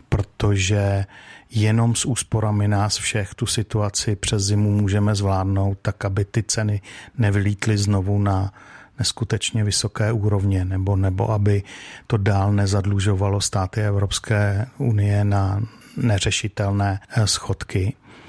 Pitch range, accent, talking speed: 105-115 Hz, native, 110 wpm